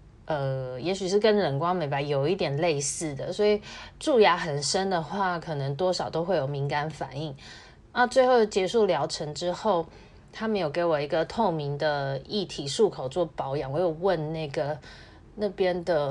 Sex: female